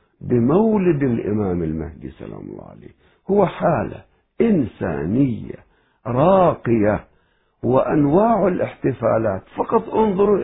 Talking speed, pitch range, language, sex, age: 80 wpm, 105-165 Hz, Arabic, male, 60-79